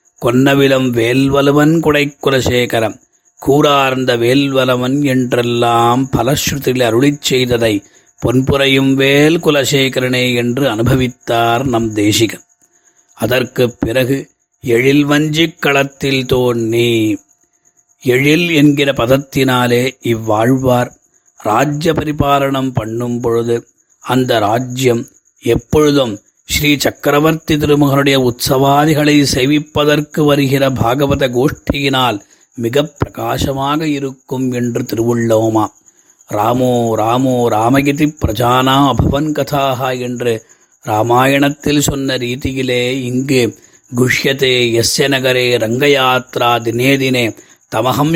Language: Tamil